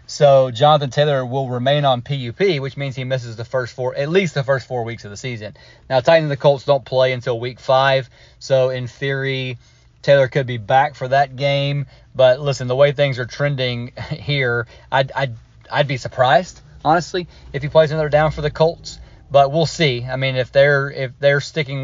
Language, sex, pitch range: English, male, 120-140 Hz